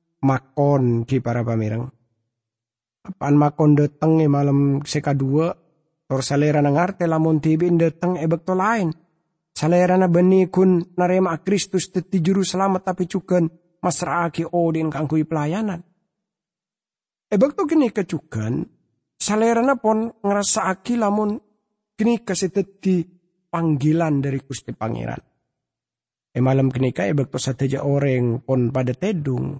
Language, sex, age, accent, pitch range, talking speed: English, male, 50-69, Indonesian, 130-175 Hz, 120 wpm